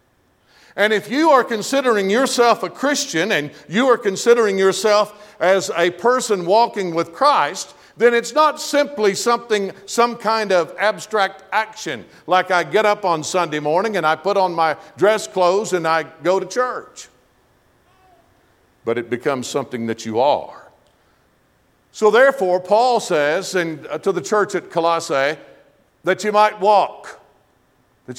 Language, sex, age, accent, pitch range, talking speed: English, male, 50-69, American, 160-210 Hz, 145 wpm